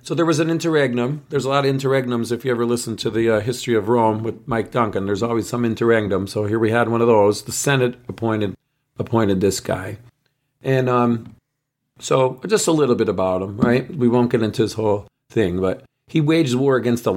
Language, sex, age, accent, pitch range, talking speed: English, male, 40-59, American, 105-125 Hz, 220 wpm